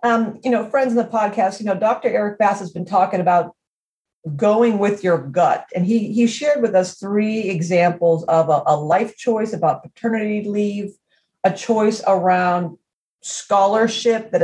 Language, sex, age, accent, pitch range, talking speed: English, female, 40-59, American, 170-210 Hz, 170 wpm